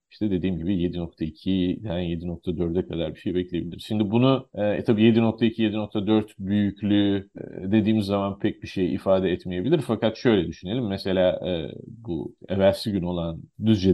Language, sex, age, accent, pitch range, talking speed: Turkish, male, 40-59, native, 90-110 Hz, 145 wpm